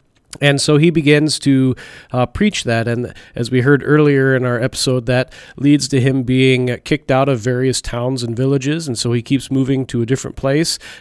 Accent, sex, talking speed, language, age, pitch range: American, male, 200 wpm, English, 40-59, 125-145 Hz